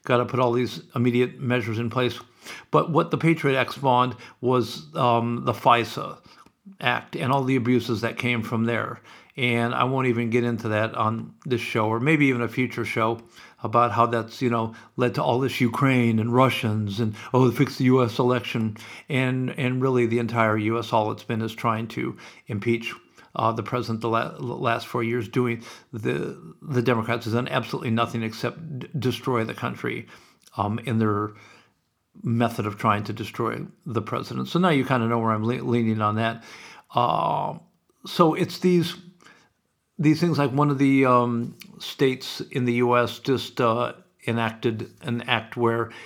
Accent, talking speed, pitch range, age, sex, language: American, 180 wpm, 115-130 Hz, 50-69, male, English